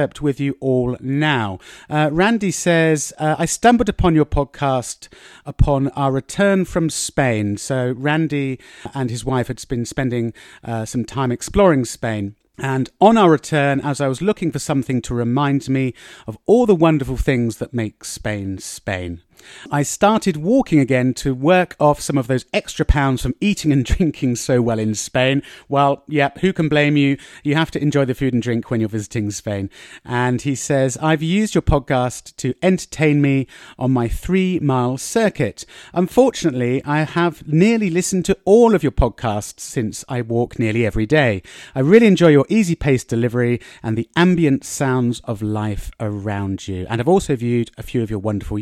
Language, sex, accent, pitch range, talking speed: English, male, British, 120-160 Hz, 180 wpm